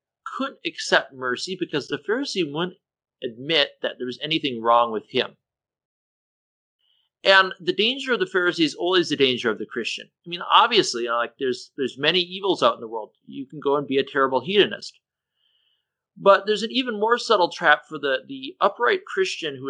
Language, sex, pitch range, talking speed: English, male, 135-205 Hz, 185 wpm